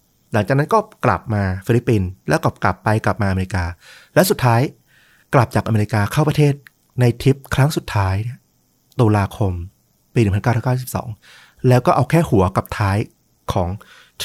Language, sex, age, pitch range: Thai, male, 30-49, 100-125 Hz